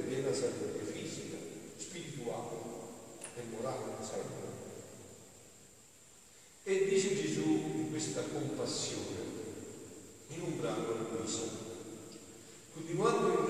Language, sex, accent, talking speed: Italian, male, native, 85 wpm